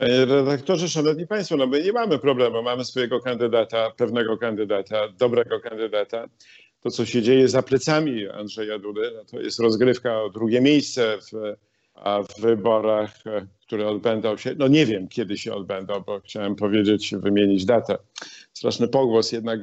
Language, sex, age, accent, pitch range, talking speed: Polish, male, 50-69, native, 105-130 Hz, 155 wpm